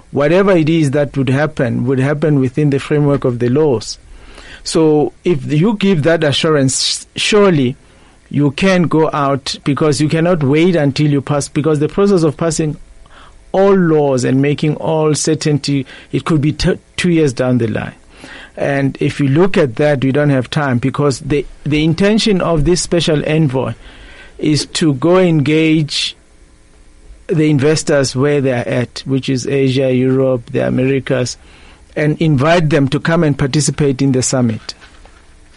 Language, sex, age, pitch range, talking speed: English, male, 50-69, 135-165 Hz, 160 wpm